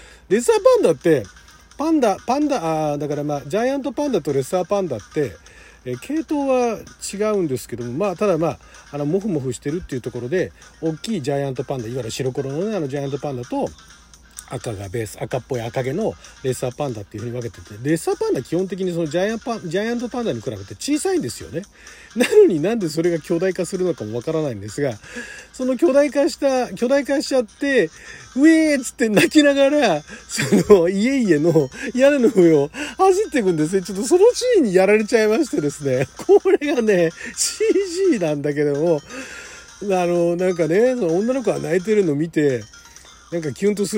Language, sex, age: Japanese, male, 40-59